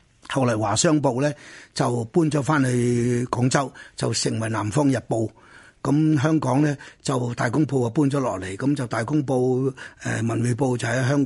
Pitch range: 125-155 Hz